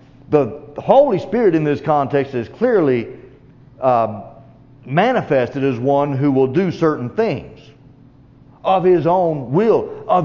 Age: 50-69